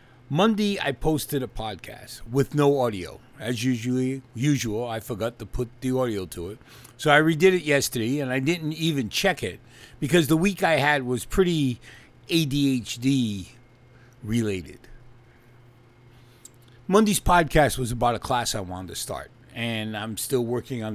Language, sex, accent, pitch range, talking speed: English, male, American, 115-145 Hz, 150 wpm